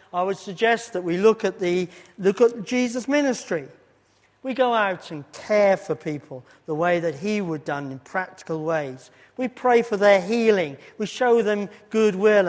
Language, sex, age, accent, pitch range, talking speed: English, male, 50-69, British, 155-225 Hz, 180 wpm